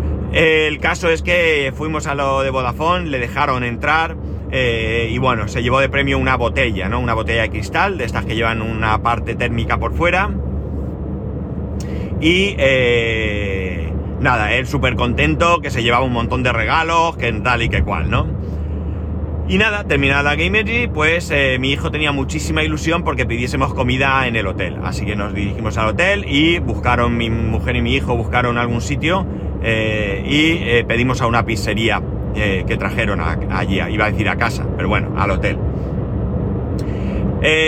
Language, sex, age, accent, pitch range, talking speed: Spanish, male, 30-49, Spanish, 100-140 Hz, 180 wpm